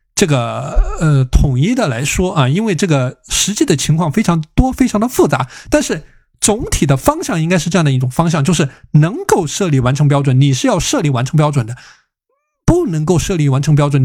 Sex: male